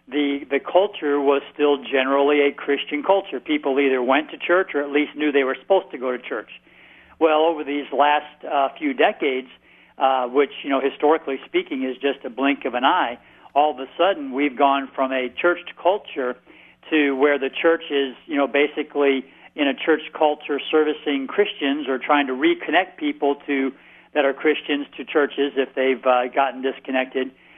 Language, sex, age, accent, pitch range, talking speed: English, male, 50-69, American, 135-155 Hz, 185 wpm